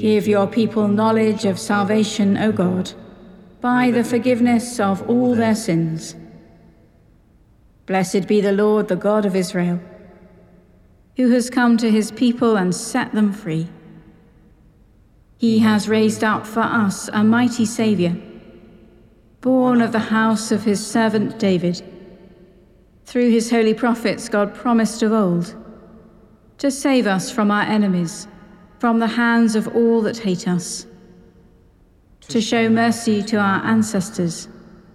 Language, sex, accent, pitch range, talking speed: English, female, British, 195-230 Hz, 135 wpm